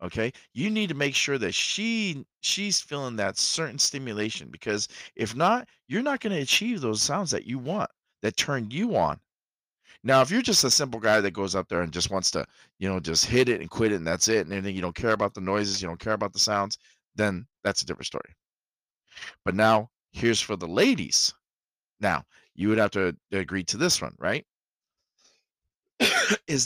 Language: English